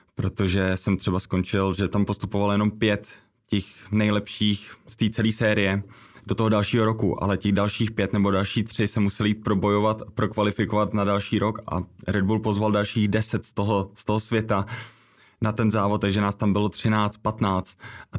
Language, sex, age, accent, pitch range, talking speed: Czech, male, 20-39, native, 100-110 Hz, 180 wpm